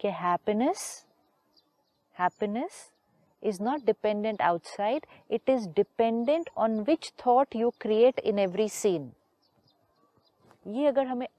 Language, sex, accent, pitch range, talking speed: Hindi, female, native, 200-260 Hz, 105 wpm